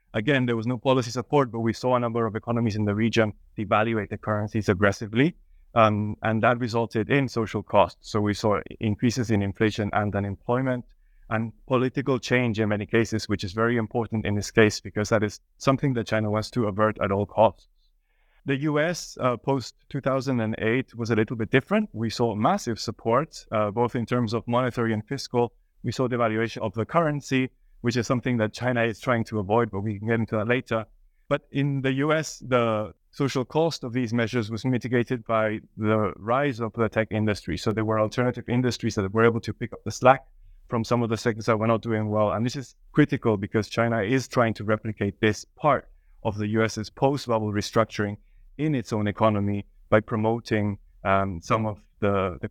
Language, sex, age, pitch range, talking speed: English, male, 30-49, 105-125 Hz, 200 wpm